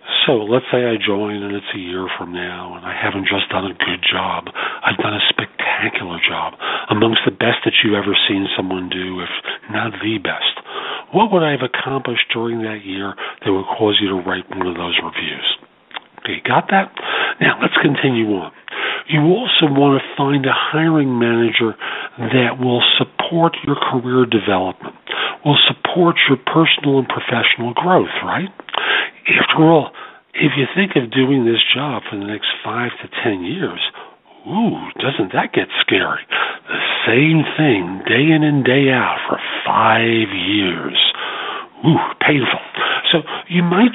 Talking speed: 165 wpm